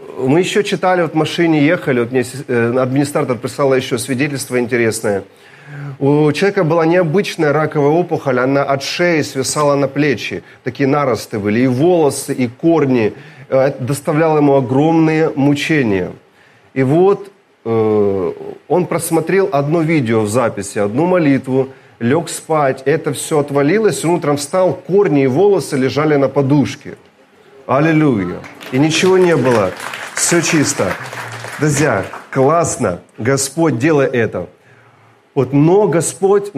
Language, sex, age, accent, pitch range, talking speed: Russian, male, 30-49, native, 130-160 Hz, 120 wpm